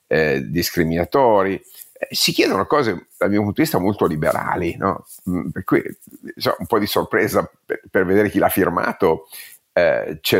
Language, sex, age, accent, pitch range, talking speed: Italian, male, 50-69, native, 90-115 Hz, 165 wpm